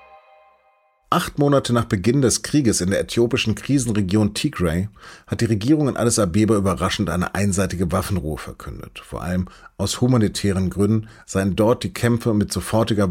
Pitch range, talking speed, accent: 90-110 Hz, 150 wpm, German